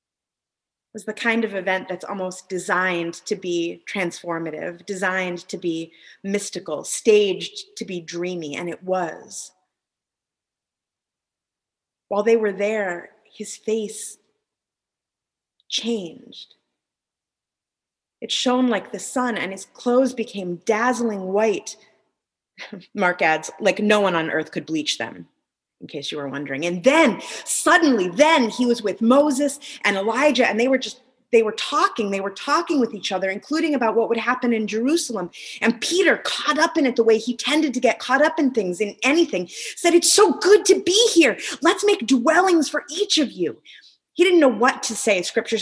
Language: English